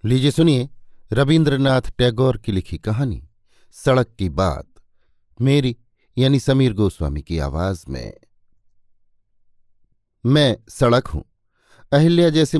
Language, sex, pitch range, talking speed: Hindi, male, 110-145 Hz, 105 wpm